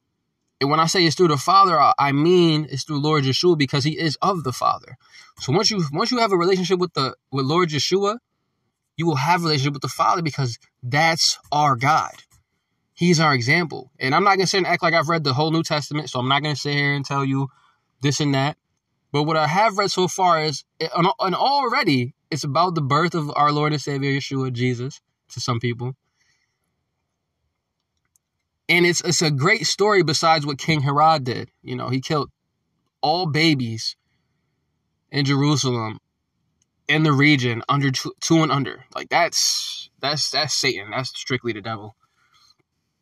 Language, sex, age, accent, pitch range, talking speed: English, male, 20-39, American, 130-165 Hz, 190 wpm